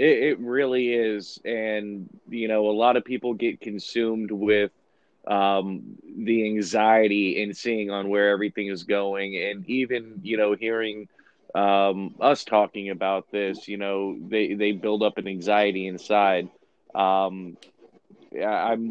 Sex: male